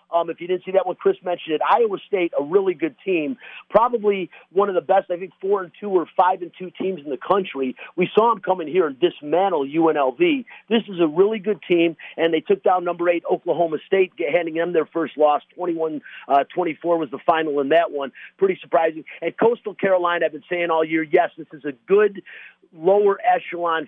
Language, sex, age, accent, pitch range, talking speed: English, male, 40-59, American, 155-190 Hz, 205 wpm